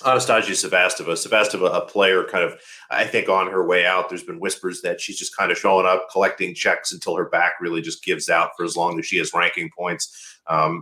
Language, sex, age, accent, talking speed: English, male, 30-49, American, 225 wpm